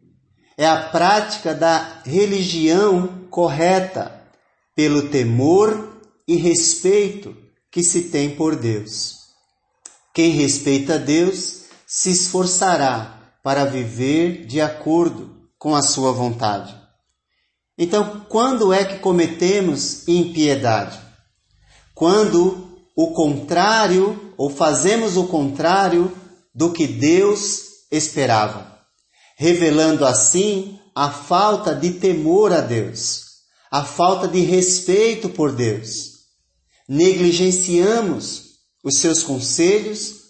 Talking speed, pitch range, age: 95 wpm, 140-185 Hz, 40-59